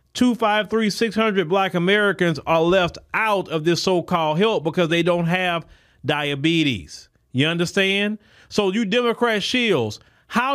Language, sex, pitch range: English, male, 160-210 Hz